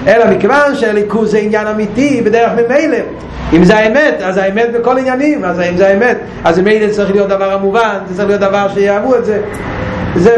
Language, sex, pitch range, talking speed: Hebrew, male, 185-235 Hz, 185 wpm